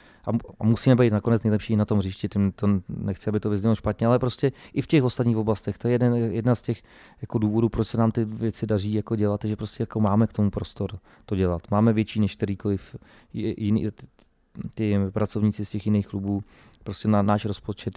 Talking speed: 205 wpm